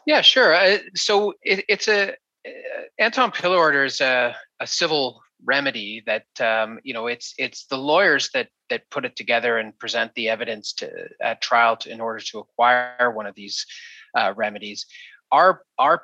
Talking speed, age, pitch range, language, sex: 185 wpm, 30-49, 115-150 Hz, English, male